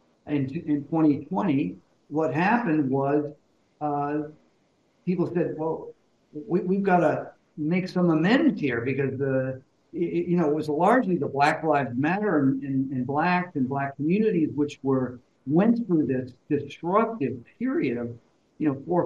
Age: 50-69